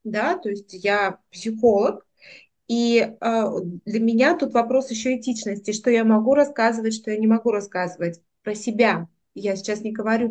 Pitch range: 195-240 Hz